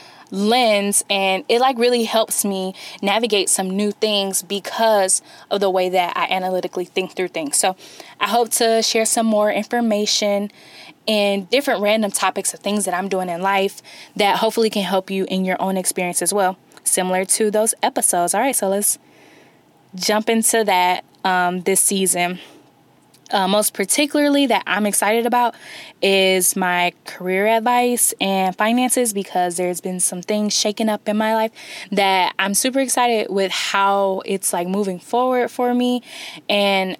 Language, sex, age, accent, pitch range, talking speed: English, female, 10-29, American, 185-230 Hz, 165 wpm